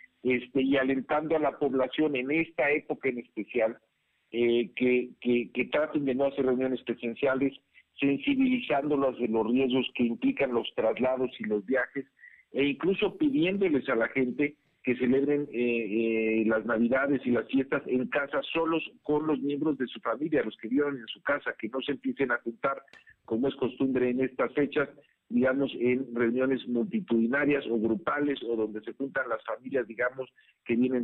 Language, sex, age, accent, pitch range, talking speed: Spanish, male, 50-69, Mexican, 120-145 Hz, 170 wpm